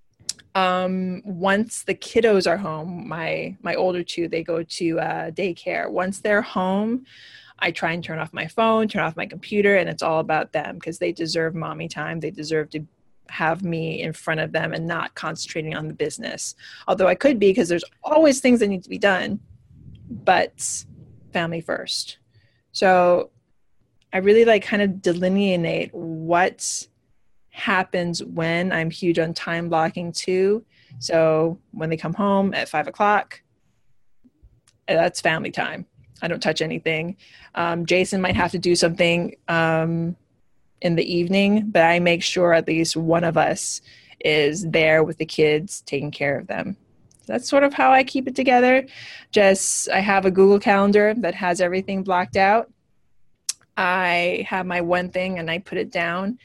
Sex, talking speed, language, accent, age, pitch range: female, 170 wpm, English, American, 20-39, 165-195 Hz